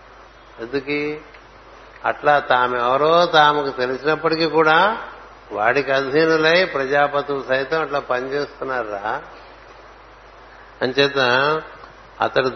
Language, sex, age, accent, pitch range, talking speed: Telugu, male, 60-79, native, 130-150 Hz, 70 wpm